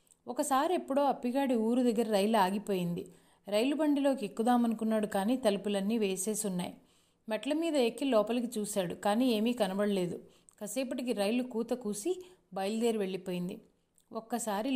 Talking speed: 115 wpm